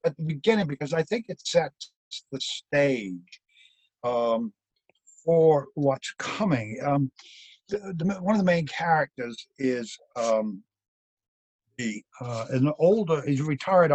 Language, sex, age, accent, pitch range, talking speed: English, male, 60-79, American, 125-165 Hz, 135 wpm